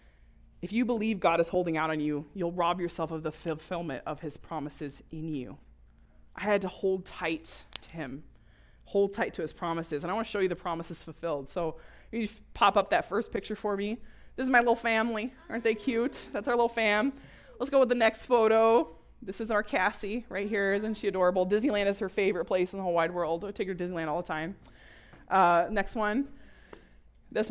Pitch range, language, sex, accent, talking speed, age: 165-220 Hz, English, female, American, 215 wpm, 20-39